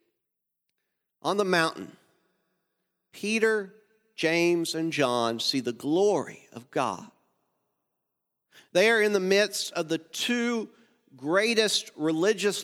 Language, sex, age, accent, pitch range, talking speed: English, male, 50-69, American, 135-200 Hz, 105 wpm